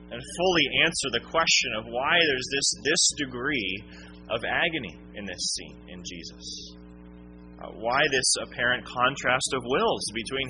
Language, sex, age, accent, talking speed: English, male, 30-49, American, 150 wpm